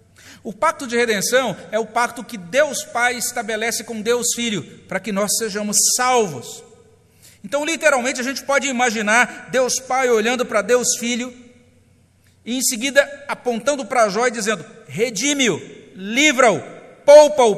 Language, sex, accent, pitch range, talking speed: Portuguese, male, Brazilian, 230-285 Hz, 145 wpm